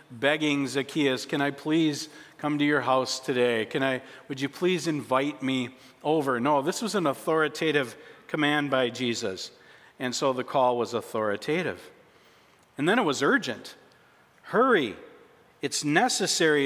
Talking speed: 145 wpm